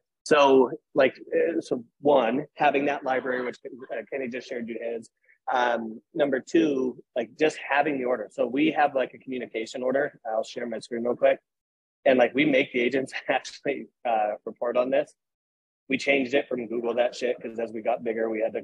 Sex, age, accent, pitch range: male, 30-49, American, 115-135 Hz